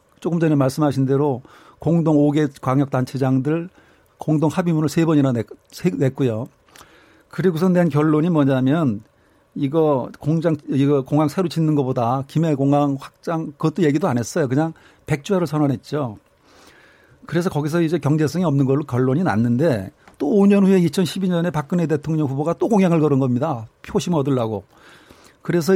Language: Korean